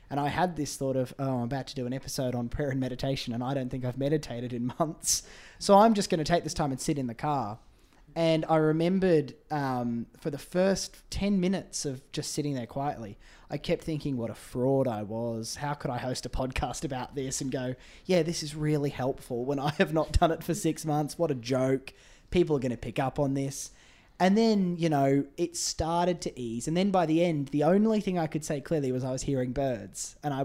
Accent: Australian